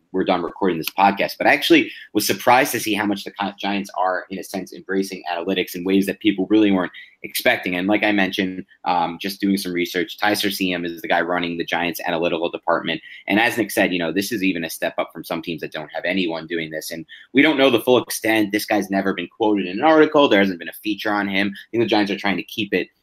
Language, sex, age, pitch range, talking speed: English, male, 30-49, 95-115 Hz, 260 wpm